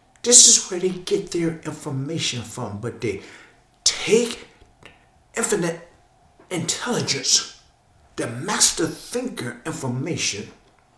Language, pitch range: English, 115-155 Hz